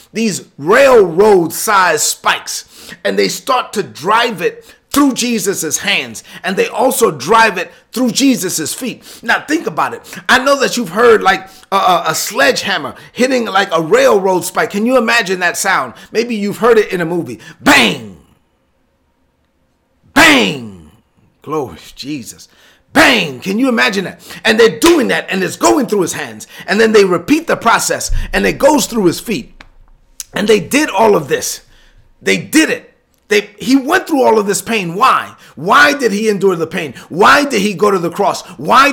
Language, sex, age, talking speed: English, male, 30-49, 175 wpm